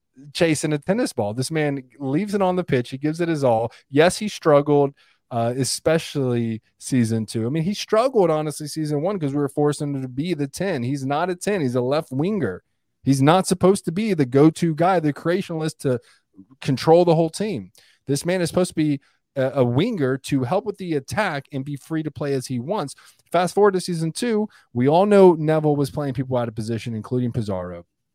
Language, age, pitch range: English, 20-39, 115-155 Hz